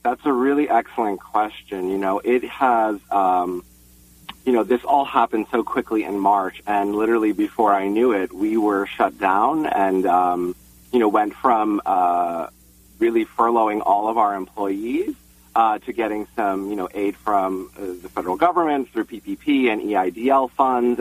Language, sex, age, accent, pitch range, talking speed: English, male, 40-59, American, 100-135 Hz, 170 wpm